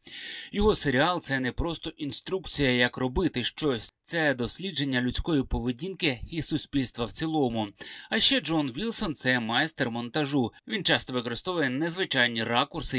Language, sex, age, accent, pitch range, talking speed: Ukrainian, male, 20-39, native, 120-160 Hz, 135 wpm